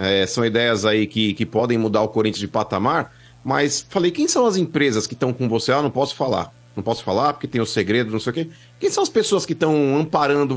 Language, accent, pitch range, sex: Portuguese, Brazilian, 130-215 Hz, male